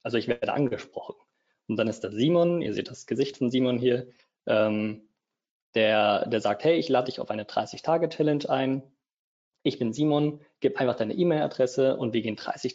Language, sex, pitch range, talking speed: German, male, 115-150 Hz, 195 wpm